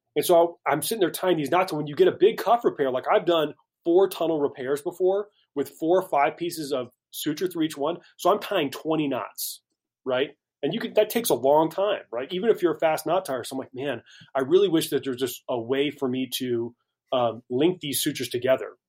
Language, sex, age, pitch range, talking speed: English, male, 30-49, 130-170 Hz, 240 wpm